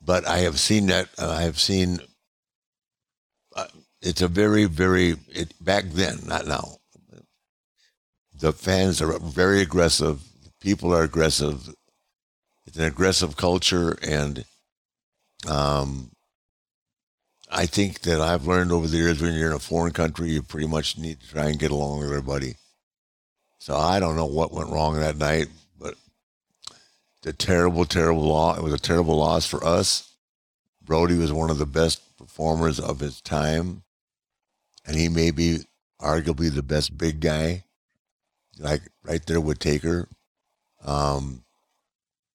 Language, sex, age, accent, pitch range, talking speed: English, male, 60-79, American, 75-85 Hz, 145 wpm